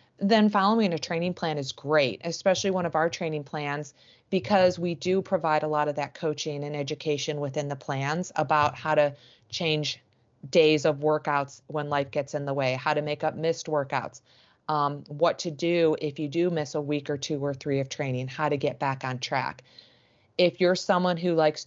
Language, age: English, 30-49